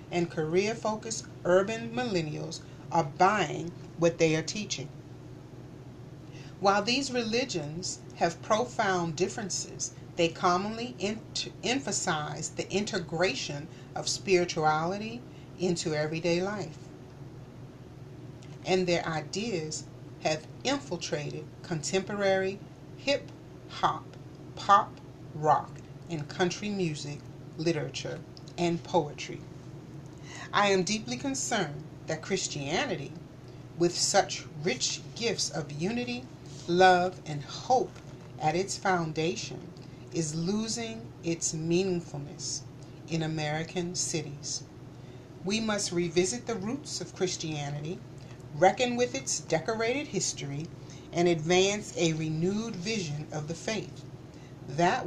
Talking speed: 95 wpm